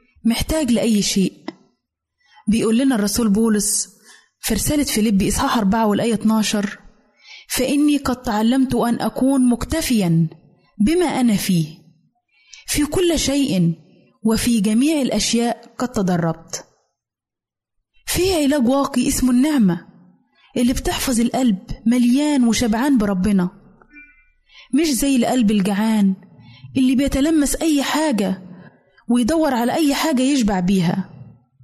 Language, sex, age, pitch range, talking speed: Arabic, female, 20-39, 205-270 Hz, 105 wpm